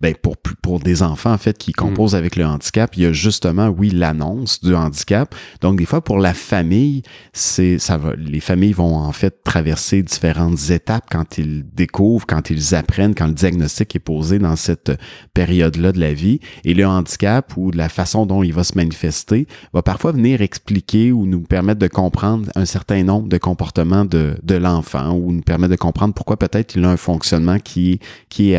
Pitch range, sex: 90-110 Hz, male